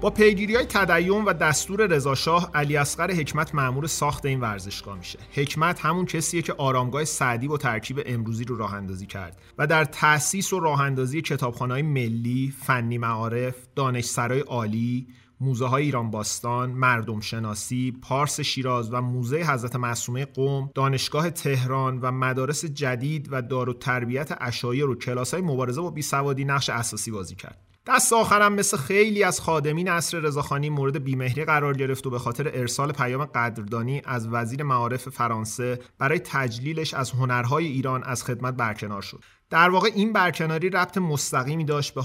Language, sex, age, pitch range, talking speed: Persian, male, 30-49, 125-150 Hz, 155 wpm